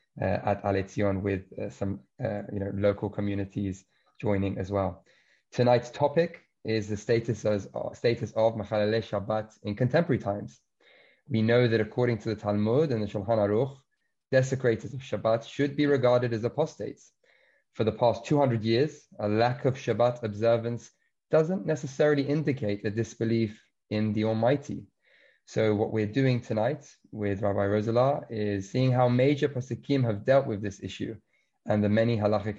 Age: 20-39